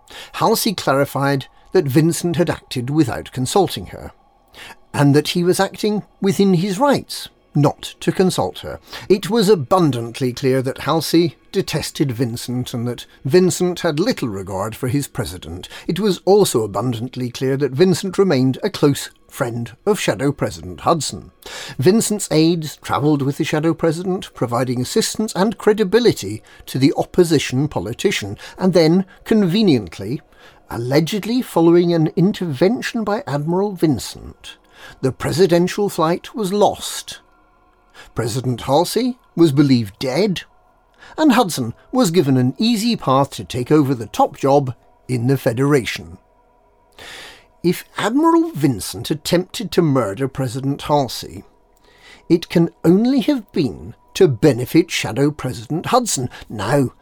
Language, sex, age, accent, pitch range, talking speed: English, male, 50-69, British, 130-190 Hz, 130 wpm